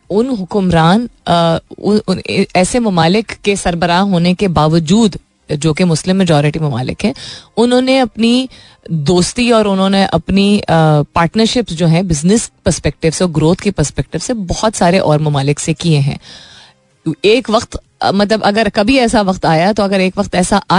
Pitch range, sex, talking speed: 160-215 Hz, female, 145 wpm